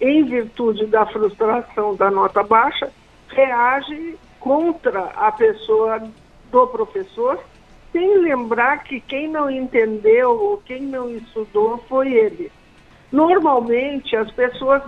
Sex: male